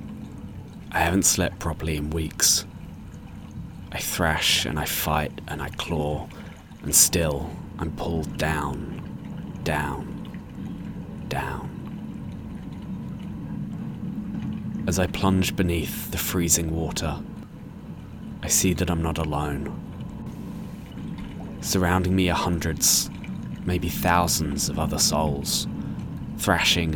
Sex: male